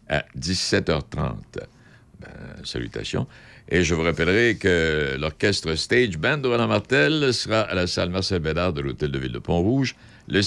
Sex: male